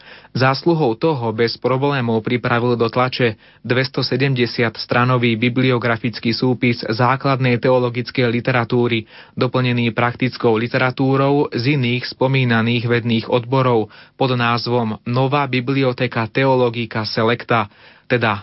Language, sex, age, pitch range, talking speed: Slovak, male, 30-49, 115-130 Hz, 95 wpm